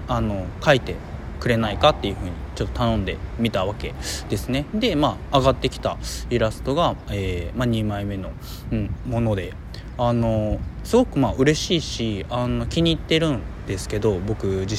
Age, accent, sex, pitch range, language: 20-39, native, male, 100-135 Hz, Japanese